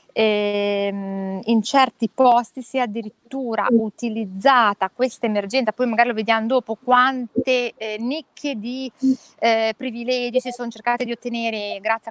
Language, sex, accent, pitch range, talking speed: Italian, female, native, 215-255 Hz, 135 wpm